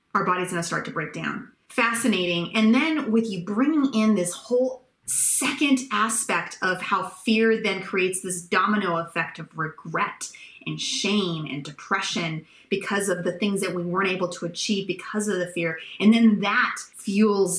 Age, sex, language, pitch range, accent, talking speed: 30-49, female, English, 180-235 Hz, American, 170 wpm